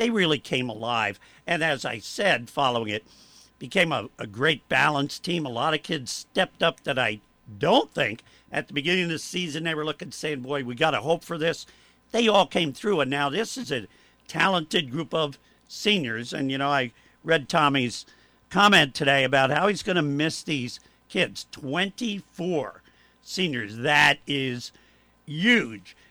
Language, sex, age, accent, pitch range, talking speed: English, male, 50-69, American, 135-170 Hz, 175 wpm